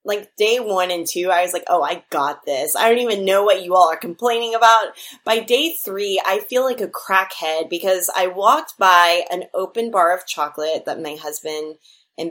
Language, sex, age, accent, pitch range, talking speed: English, female, 20-39, American, 170-235 Hz, 210 wpm